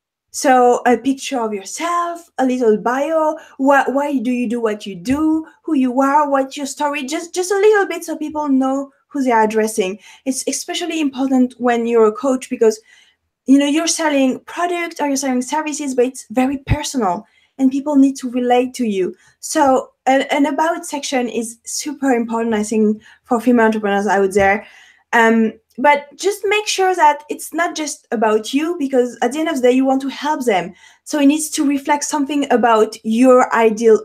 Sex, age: female, 20-39